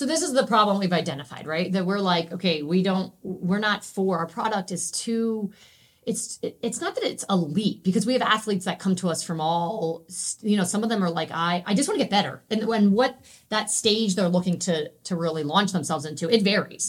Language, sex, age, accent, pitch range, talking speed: English, female, 30-49, American, 180-230 Hz, 235 wpm